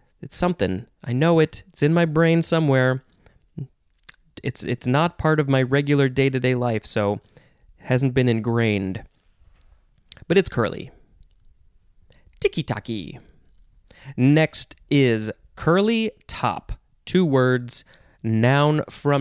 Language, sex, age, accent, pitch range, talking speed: English, male, 20-39, American, 120-160 Hz, 110 wpm